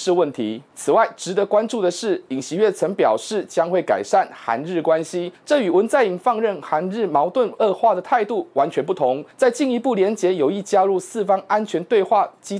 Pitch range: 180-235 Hz